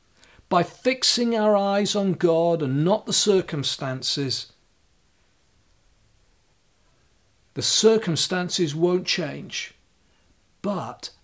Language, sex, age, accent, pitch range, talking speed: English, male, 50-69, British, 125-185 Hz, 80 wpm